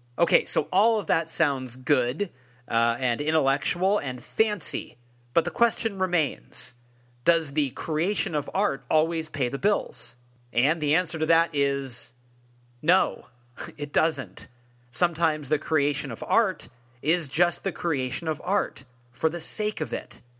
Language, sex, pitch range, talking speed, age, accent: English, male, 125-180 Hz, 145 wpm, 30-49, American